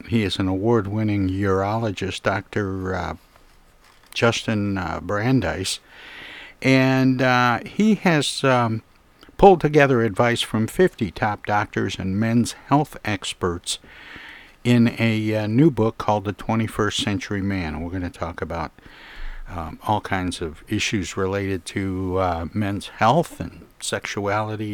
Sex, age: male, 60-79